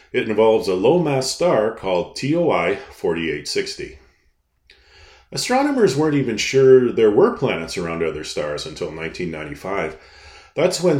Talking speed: 115 wpm